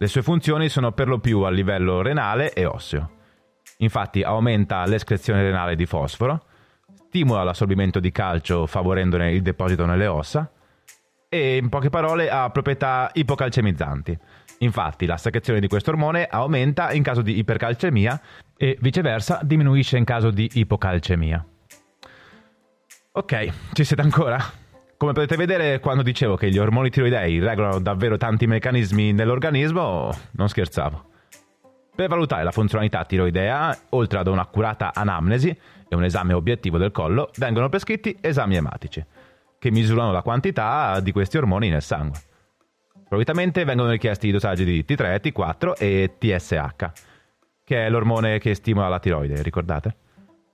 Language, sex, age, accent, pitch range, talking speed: Italian, male, 30-49, native, 95-135 Hz, 140 wpm